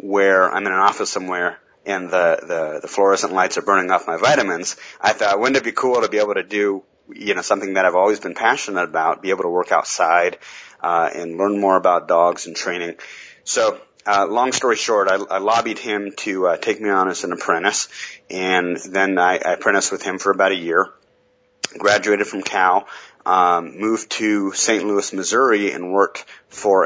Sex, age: male, 30-49